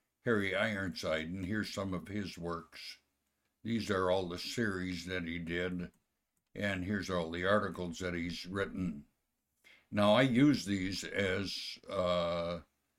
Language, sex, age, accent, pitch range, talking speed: English, male, 60-79, American, 85-100 Hz, 140 wpm